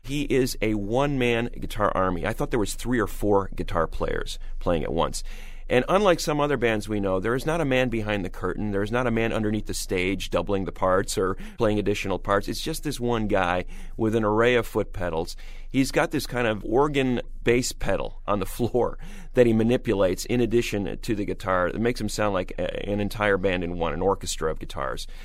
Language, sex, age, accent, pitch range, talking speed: English, male, 40-59, American, 100-130 Hz, 220 wpm